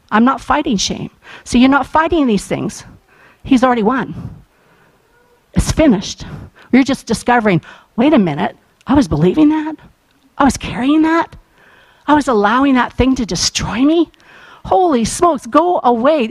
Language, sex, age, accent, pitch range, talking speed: English, female, 50-69, American, 220-275 Hz, 150 wpm